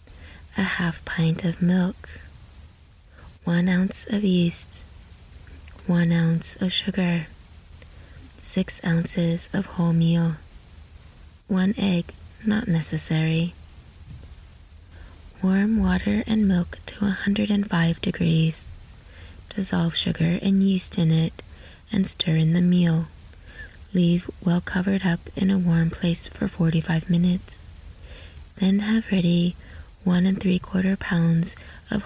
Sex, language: female, English